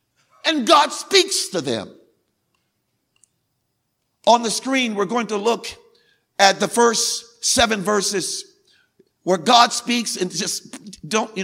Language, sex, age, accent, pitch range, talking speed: English, male, 50-69, American, 170-215 Hz, 125 wpm